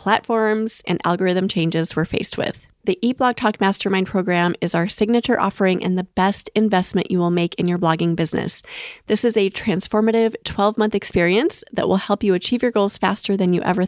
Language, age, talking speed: English, 30-49, 185 wpm